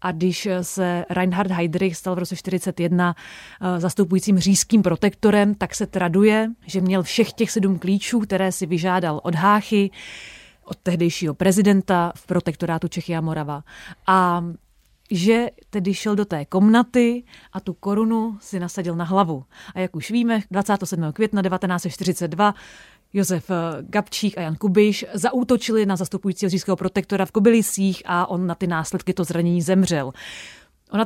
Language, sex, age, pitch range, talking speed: Czech, female, 30-49, 175-205 Hz, 145 wpm